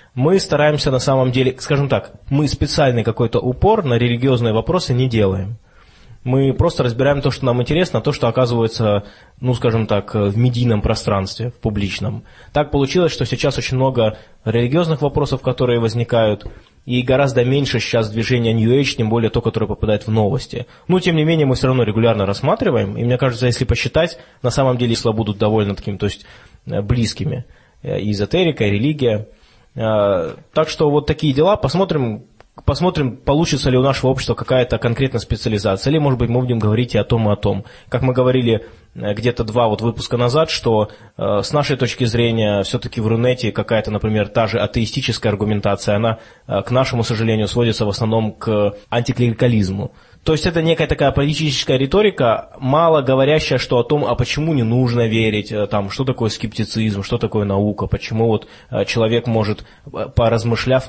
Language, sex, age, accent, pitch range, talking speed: Russian, male, 20-39, native, 110-135 Hz, 170 wpm